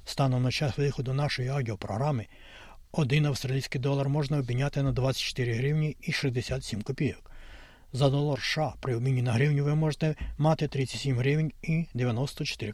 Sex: male